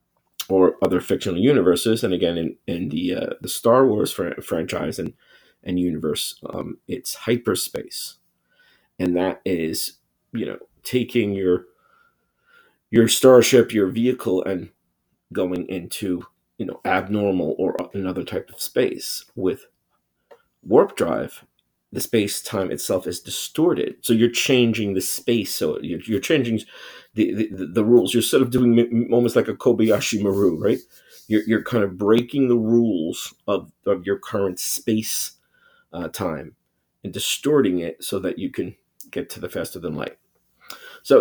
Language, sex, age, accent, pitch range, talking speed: English, male, 30-49, American, 95-120 Hz, 155 wpm